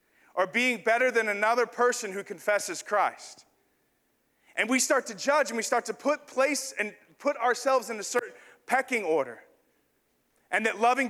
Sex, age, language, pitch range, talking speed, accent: male, 30-49, English, 170-225 Hz, 170 wpm, American